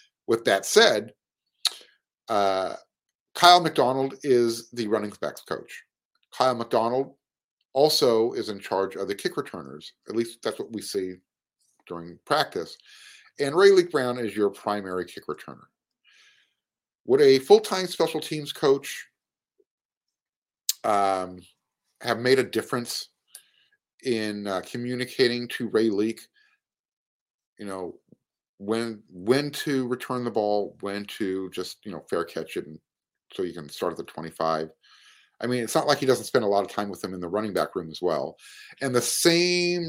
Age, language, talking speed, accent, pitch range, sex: 50-69, English, 155 wpm, American, 100-155 Hz, male